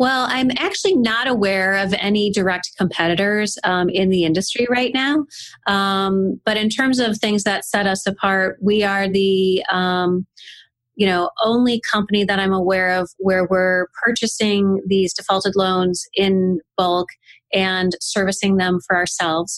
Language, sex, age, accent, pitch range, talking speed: English, female, 30-49, American, 175-205 Hz, 150 wpm